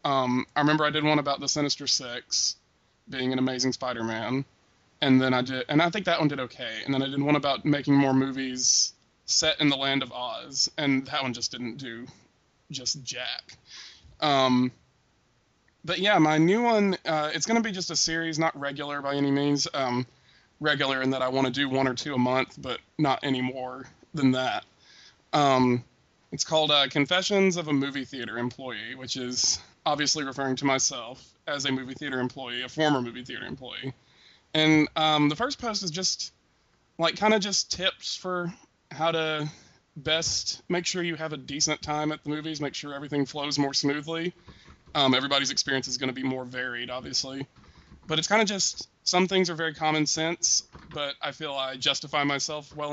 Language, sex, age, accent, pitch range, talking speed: English, male, 20-39, American, 130-155 Hz, 195 wpm